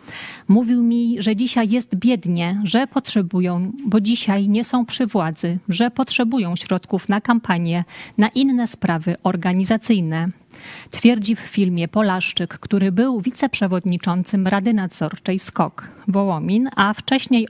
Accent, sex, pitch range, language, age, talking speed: native, female, 185-230 Hz, Polish, 40-59, 125 wpm